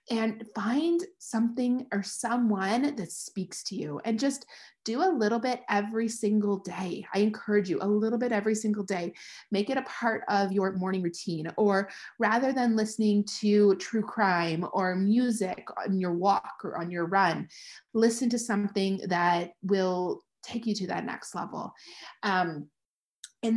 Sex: female